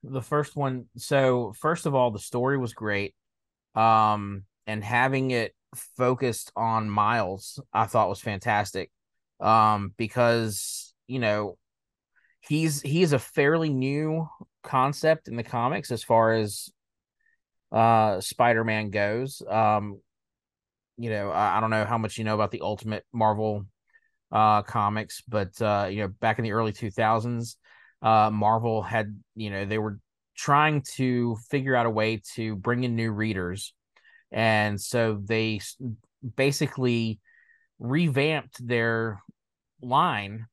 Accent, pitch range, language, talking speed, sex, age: American, 105-130 Hz, English, 135 wpm, male, 20-39